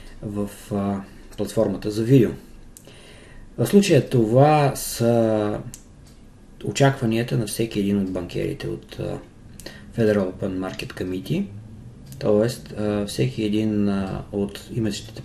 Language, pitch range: Bulgarian, 95-115 Hz